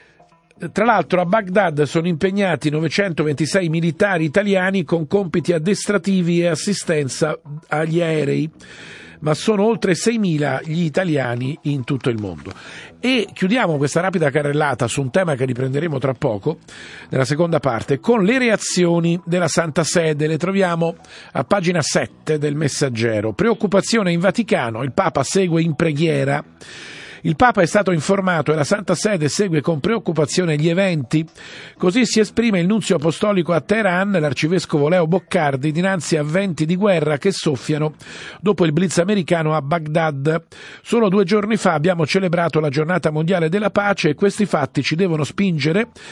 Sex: male